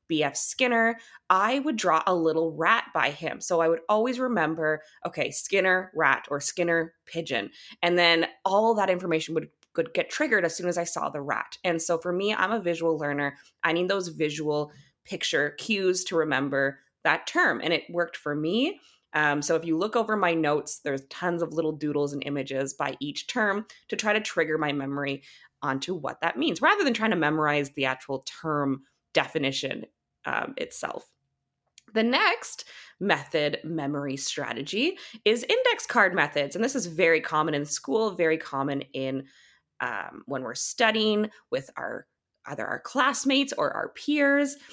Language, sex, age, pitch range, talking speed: English, female, 20-39, 145-215 Hz, 175 wpm